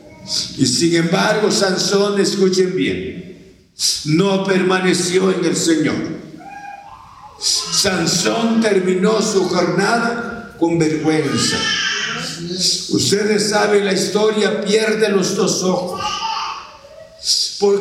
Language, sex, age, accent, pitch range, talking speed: Spanish, male, 60-79, Mexican, 190-225 Hz, 90 wpm